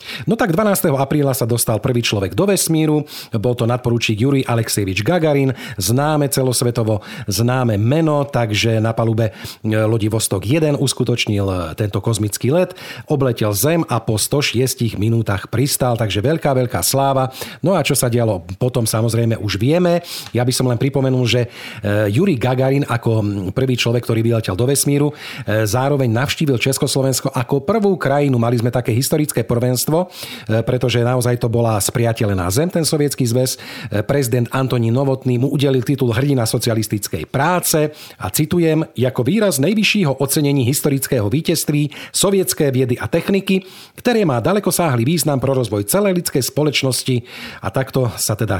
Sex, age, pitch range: male, 40-59, 115-145 Hz